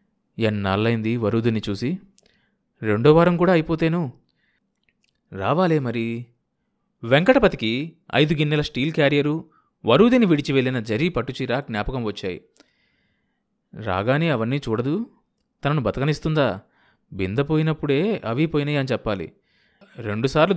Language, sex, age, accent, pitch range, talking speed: Telugu, male, 20-39, native, 115-165 Hz, 95 wpm